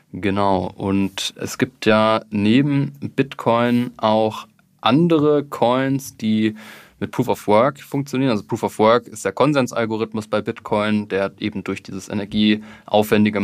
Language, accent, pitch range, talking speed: German, German, 105-120 Hz, 135 wpm